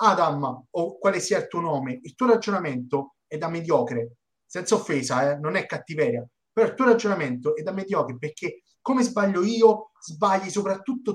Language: Italian